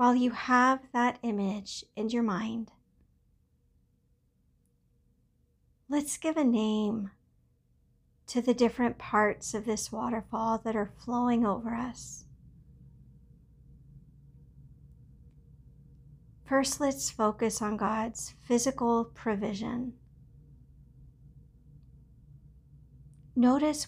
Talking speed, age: 80 wpm, 50-69